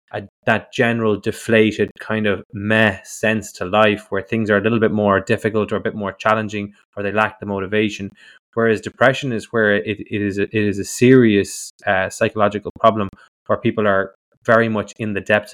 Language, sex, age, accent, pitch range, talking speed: English, male, 20-39, Irish, 100-110 Hz, 190 wpm